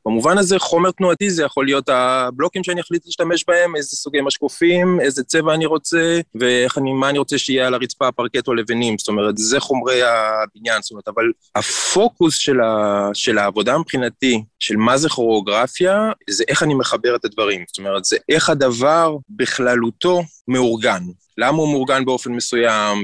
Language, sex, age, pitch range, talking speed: Hebrew, male, 20-39, 120-160 Hz, 170 wpm